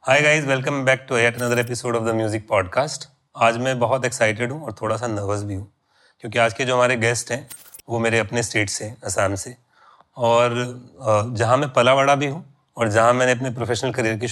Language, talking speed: Hindi, 205 wpm